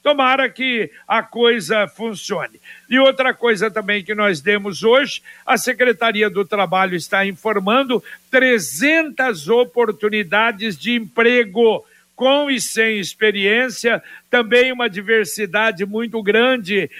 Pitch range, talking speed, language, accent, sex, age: 210-255 Hz, 115 wpm, Portuguese, Brazilian, male, 60-79